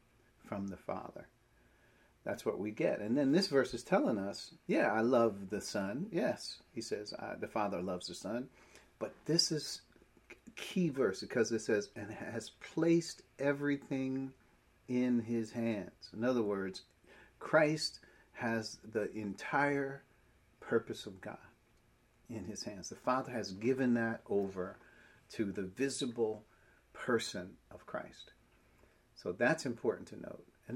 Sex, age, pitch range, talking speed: male, 40-59, 100-135 Hz, 140 wpm